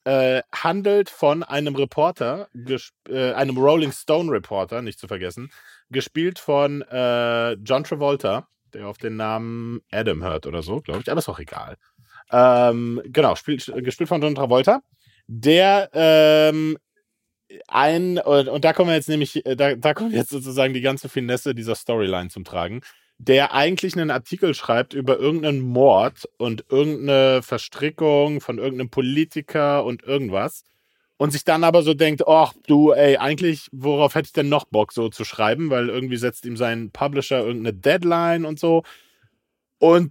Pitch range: 125-160 Hz